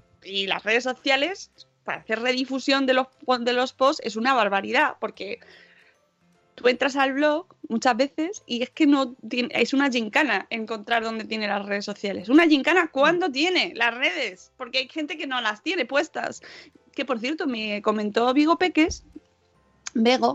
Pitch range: 220-280 Hz